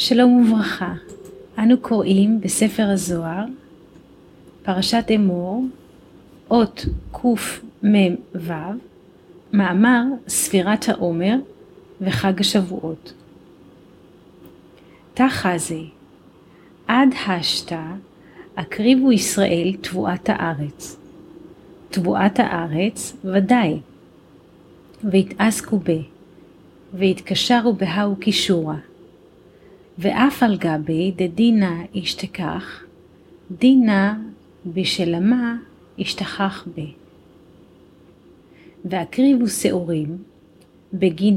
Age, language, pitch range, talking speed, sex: 30-49, Hebrew, 175-220 Hz, 60 wpm, female